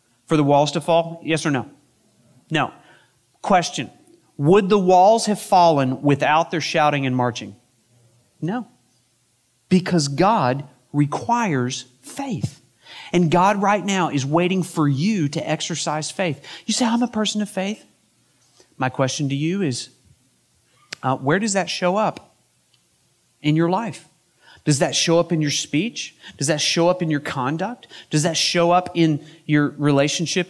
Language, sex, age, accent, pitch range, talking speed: English, male, 40-59, American, 135-180 Hz, 155 wpm